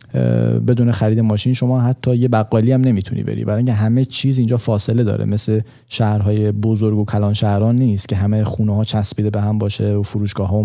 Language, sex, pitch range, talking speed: Persian, male, 105-125 Hz, 195 wpm